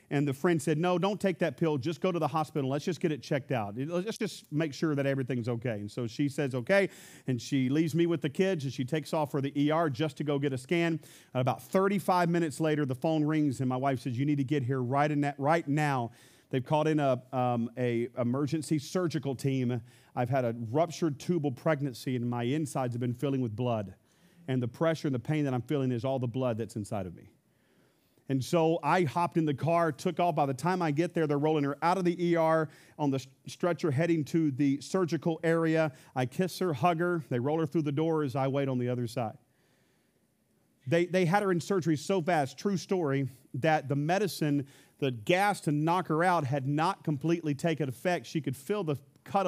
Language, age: English, 40-59